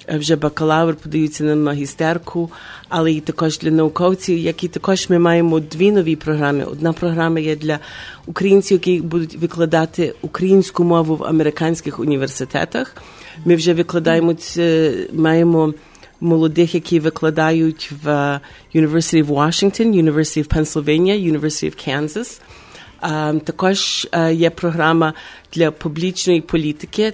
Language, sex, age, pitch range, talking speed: English, female, 40-59, 150-170 Hz, 125 wpm